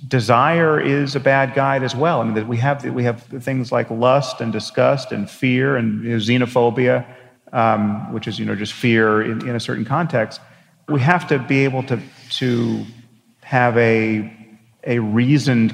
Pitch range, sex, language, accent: 110-125 Hz, male, English, American